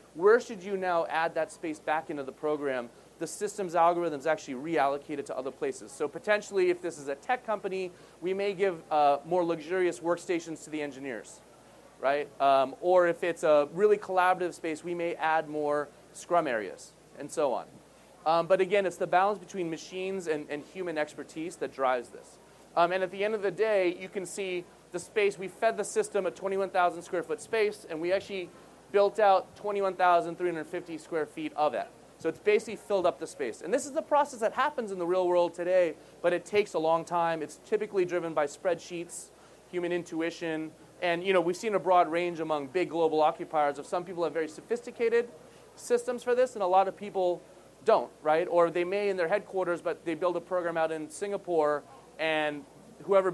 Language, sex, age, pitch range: English, male, 30-49, 160-195 Hz